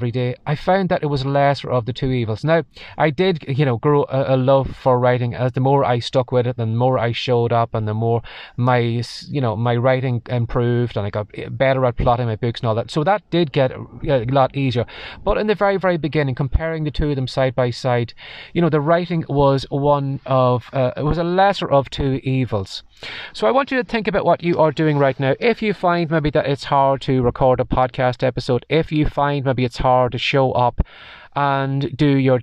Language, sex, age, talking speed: English, male, 30-49, 235 wpm